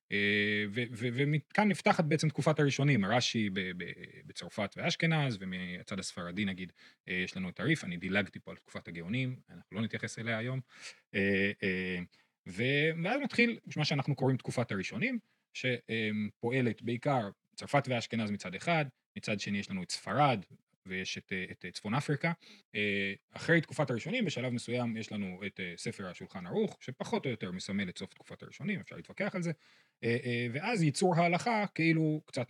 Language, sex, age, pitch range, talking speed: Hebrew, male, 30-49, 105-160 Hz, 160 wpm